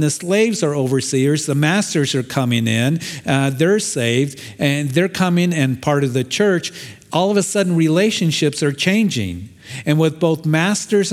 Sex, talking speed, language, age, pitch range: male, 165 wpm, English, 50-69, 130-165 Hz